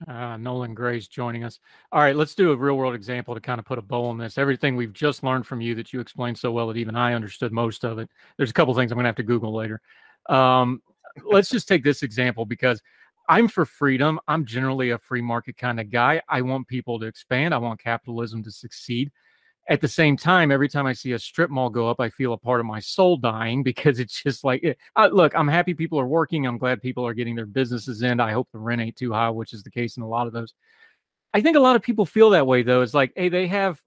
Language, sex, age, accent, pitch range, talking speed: English, male, 30-49, American, 120-155 Hz, 260 wpm